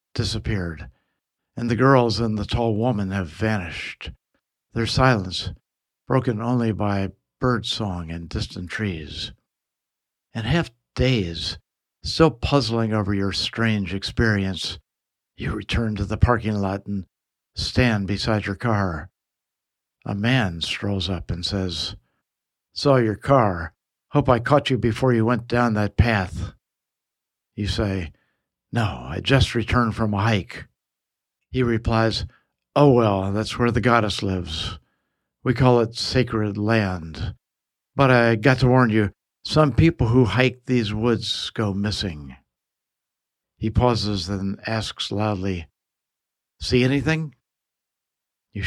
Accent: American